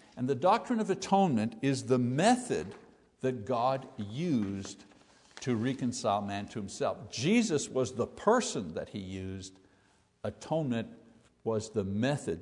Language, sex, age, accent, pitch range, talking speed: English, male, 60-79, American, 125-180 Hz, 130 wpm